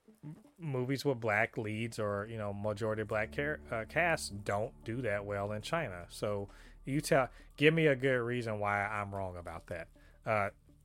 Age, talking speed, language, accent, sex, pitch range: 30-49, 170 wpm, English, American, male, 95-130 Hz